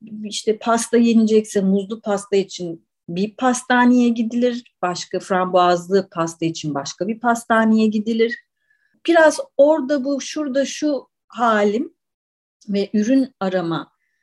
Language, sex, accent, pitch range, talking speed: Turkish, female, native, 180-250 Hz, 110 wpm